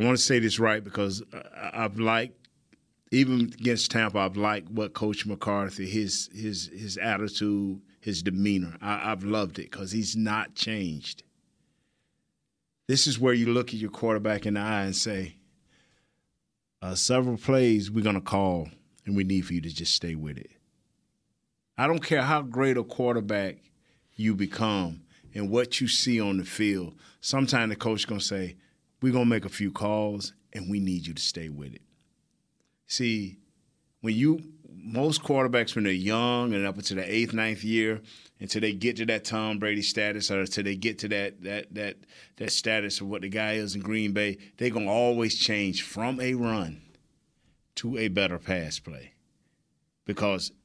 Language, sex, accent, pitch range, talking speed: English, male, American, 100-115 Hz, 180 wpm